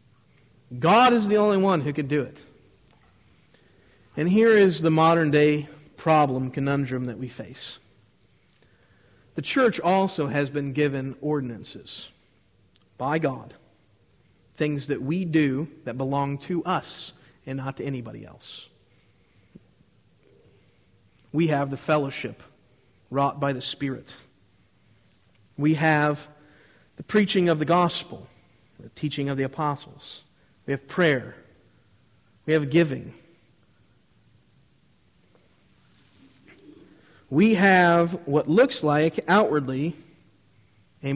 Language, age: English, 40-59